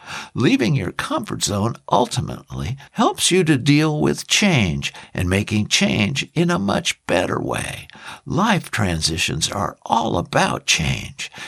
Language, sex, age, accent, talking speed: English, male, 60-79, American, 130 wpm